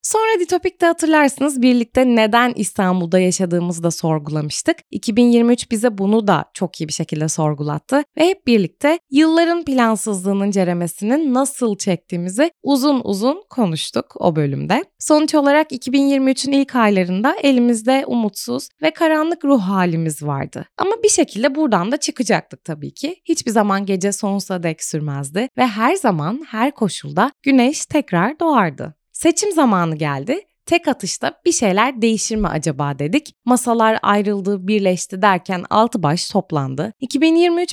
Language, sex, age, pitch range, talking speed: Turkish, female, 20-39, 185-280 Hz, 135 wpm